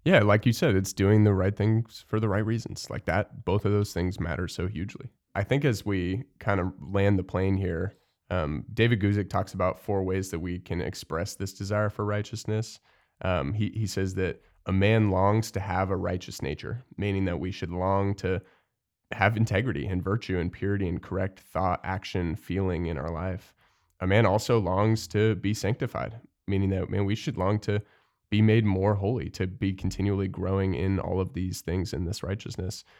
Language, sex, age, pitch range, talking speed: English, male, 20-39, 90-105 Hz, 200 wpm